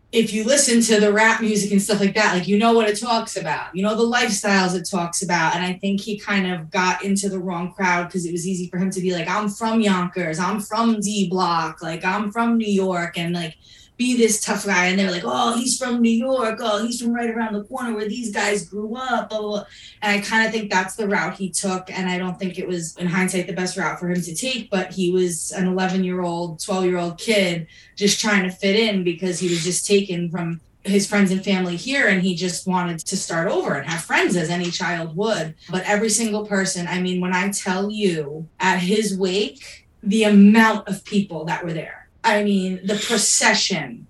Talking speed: 230 wpm